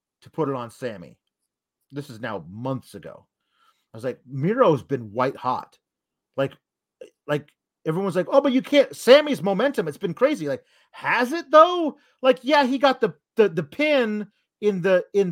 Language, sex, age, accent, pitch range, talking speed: English, male, 30-49, American, 170-245 Hz, 170 wpm